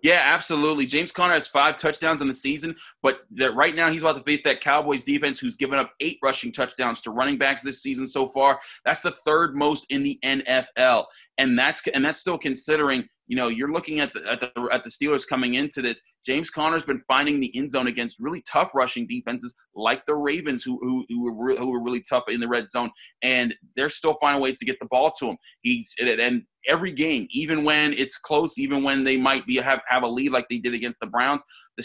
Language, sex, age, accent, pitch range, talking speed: English, male, 30-49, American, 125-150 Hz, 235 wpm